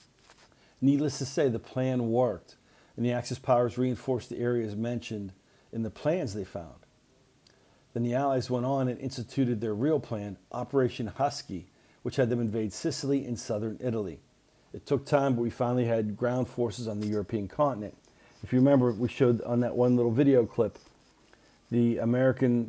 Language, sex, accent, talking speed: English, male, American, 170 wpm